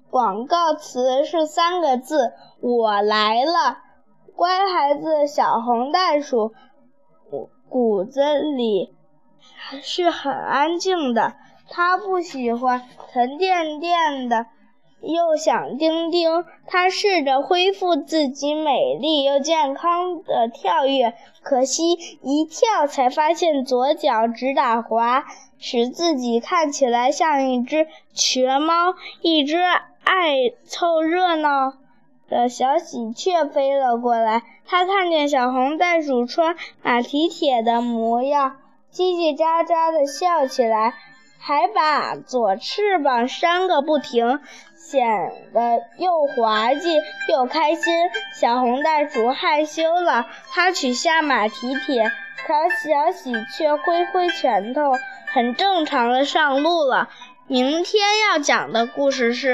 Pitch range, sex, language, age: 250-335 Hz, female, Chinese, 10-29